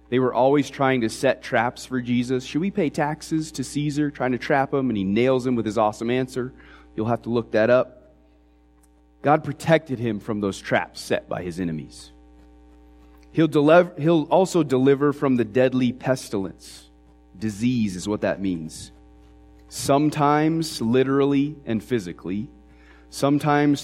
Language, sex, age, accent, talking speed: English, male, 30-49, American, 155 wpm